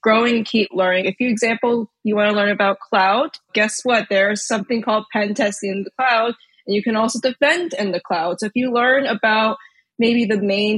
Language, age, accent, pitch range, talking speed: English, 20-39, American, 200-255 Hz, 215 wpm